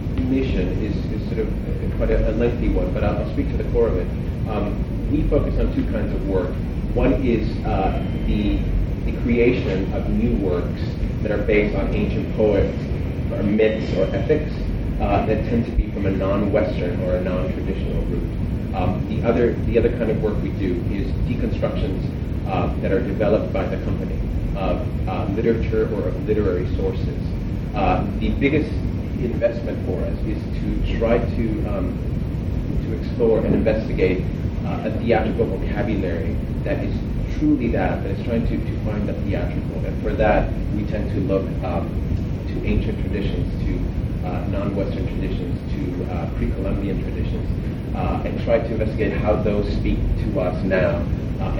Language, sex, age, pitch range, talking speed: English, male, 30-49, 90-110 Hz, 170 wpm